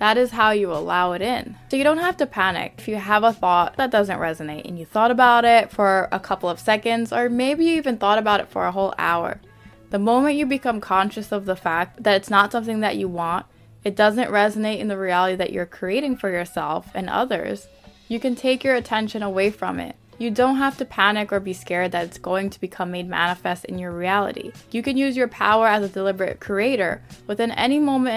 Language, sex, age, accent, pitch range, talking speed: English, female, 10-29, American, 185-235 Hz, 230 wpm